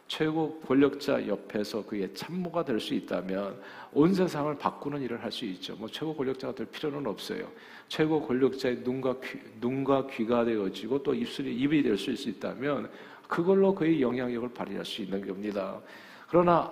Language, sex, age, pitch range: Korean, male, 50-69, 115-155 Hz